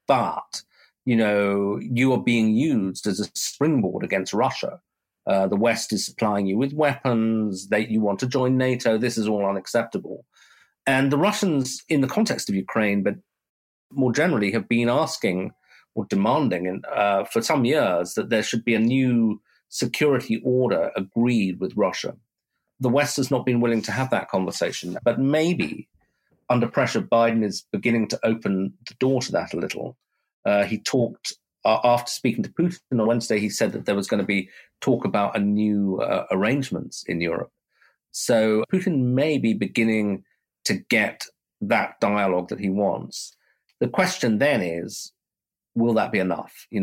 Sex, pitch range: male, 100-125 Hz